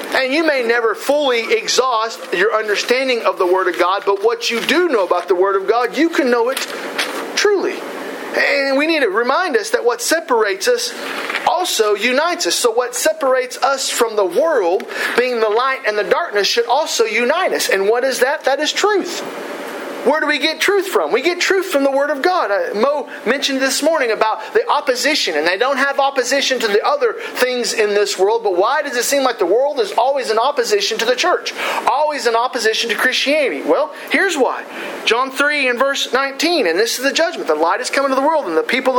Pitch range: 230-365 Hz